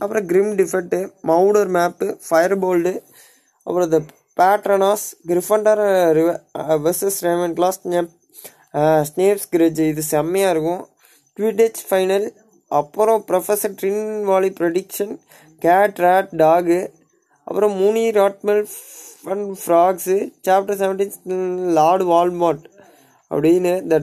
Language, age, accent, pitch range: Tamil, 20-39, native, 155-190 Hz